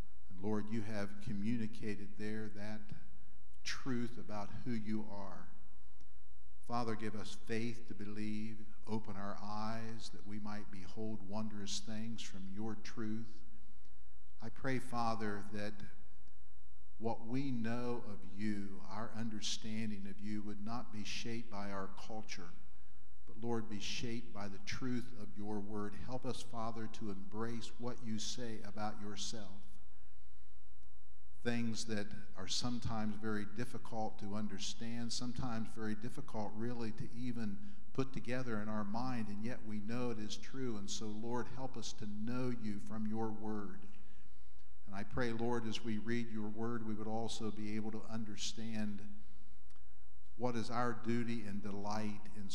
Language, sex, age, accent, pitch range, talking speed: English, male, 50-69, American, 100-115 Hz, 145 wpm